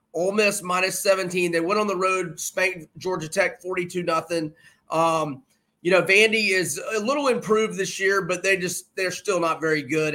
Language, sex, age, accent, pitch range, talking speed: English, male, 30-49, American, 160-190 Hz, 185 wpm